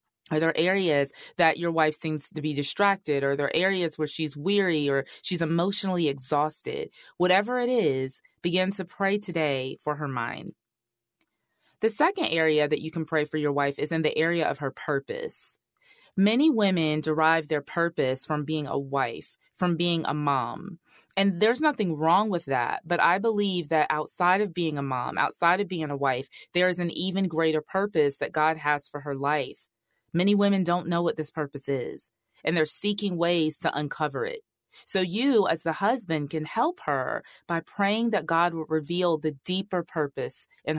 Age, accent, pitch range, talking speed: 20-39, American, 150-190 Hz, 185 wpm